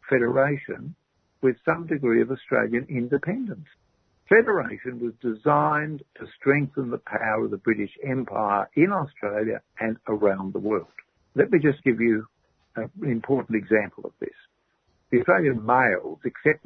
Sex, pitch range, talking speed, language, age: male, 115-170 Hz, 135 wpm, English, 60-79